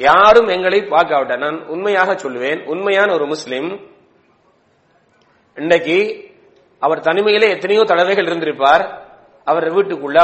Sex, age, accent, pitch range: male, 40-59, Indian, 150-195 Hz